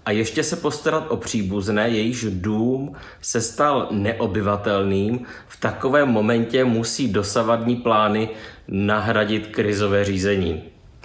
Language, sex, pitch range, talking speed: Czech, male, 100-115 Hz, 110 wpm